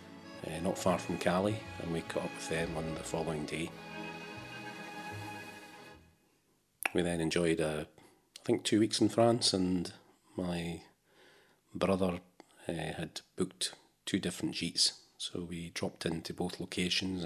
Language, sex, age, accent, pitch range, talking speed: English, male, 40-59, British, 80-95 Hz, 140 wpm